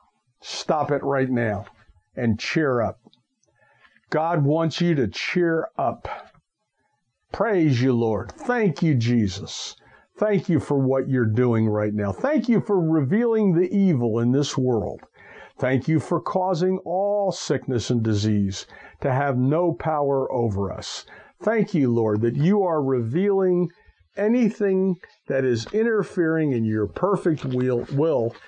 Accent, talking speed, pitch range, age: American, 135 wpm, 115-170 Hz, 50-69